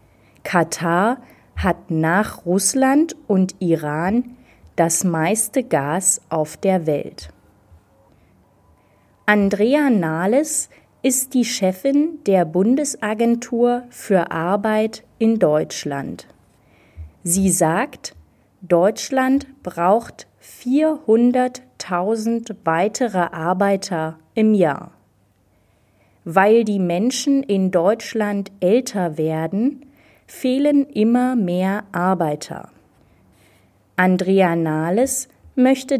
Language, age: German, 30-49